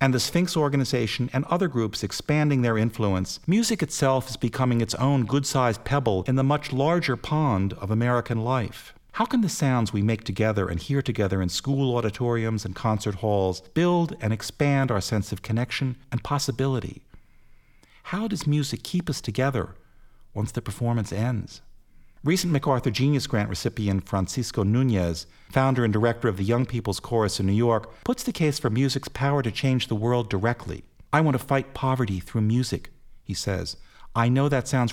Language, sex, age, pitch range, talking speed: English, male, 50-69, 100-135 Hz, 175 wpm